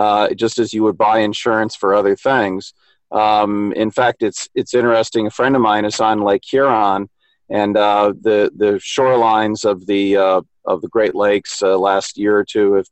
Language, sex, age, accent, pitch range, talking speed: English, male, 40-59, American, 105-120 Hz, 195 wpm